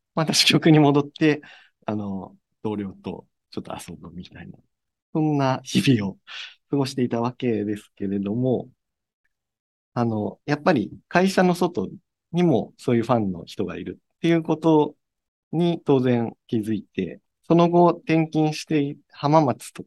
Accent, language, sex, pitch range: native, Japanese, male, 110-155 Hz